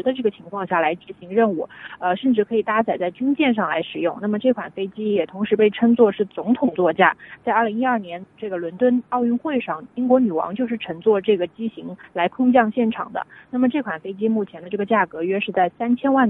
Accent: native